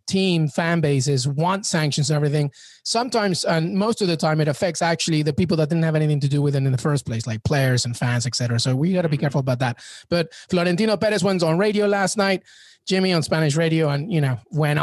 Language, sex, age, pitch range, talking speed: English, male, 20-39, 140-170 Hz, 230 wpm